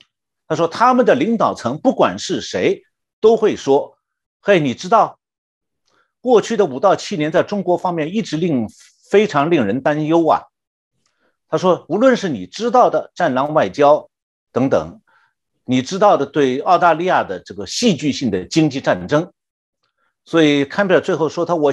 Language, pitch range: Chinese, 130-205 Hz